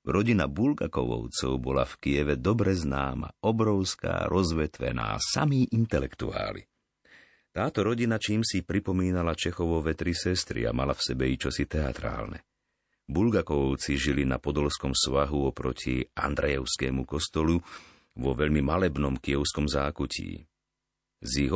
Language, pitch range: Slovak, 70-95 Hz